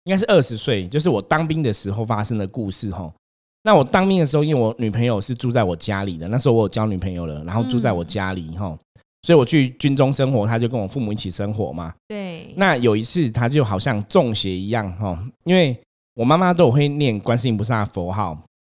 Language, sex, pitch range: Chinese, male, 105-150 Hz